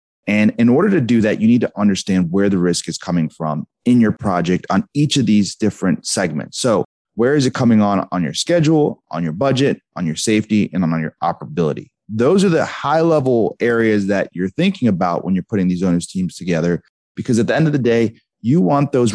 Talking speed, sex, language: 220 wpm, male, English